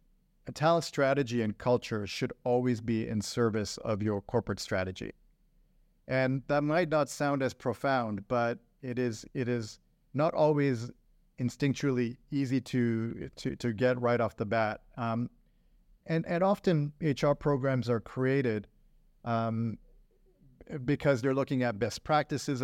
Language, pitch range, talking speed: English, 115-140 Hz, 140 wpm